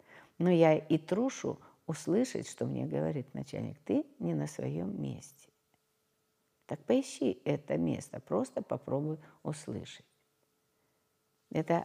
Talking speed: 110 wpm